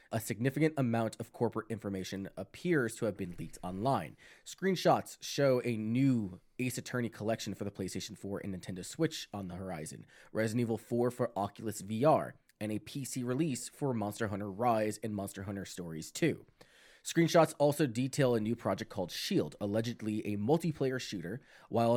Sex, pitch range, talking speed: male, 105-135 Hz, 165 wpm